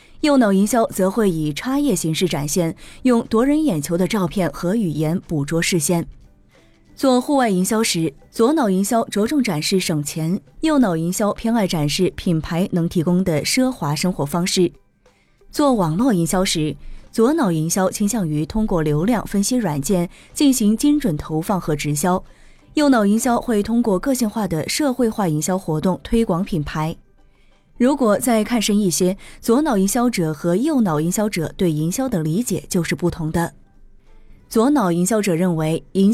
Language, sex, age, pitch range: Chinese, female, 20-39, 165-230 Hz